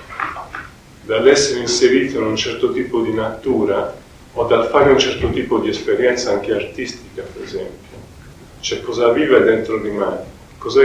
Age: 40-59